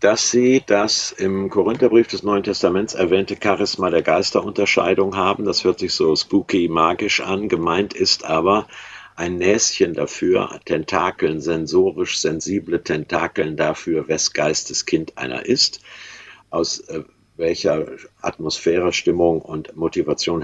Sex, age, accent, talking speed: male, 50-69, German, 120 wpm